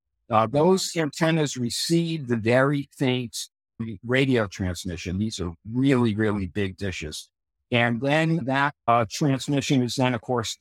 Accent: American